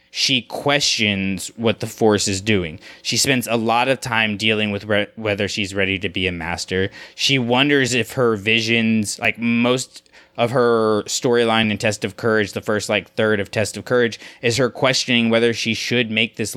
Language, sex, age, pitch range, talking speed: English, male, 20-39, 100-115 Hz, 190 wpm